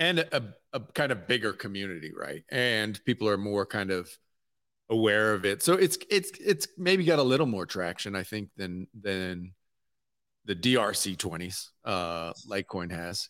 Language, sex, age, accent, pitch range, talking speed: English, male, 30-49, American, 100-140 Hz, 170 wpm